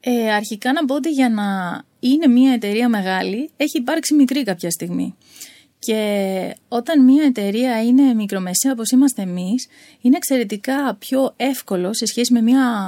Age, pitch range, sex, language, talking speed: 20-39, 205-280 Hz, female, Greek, 155 wpm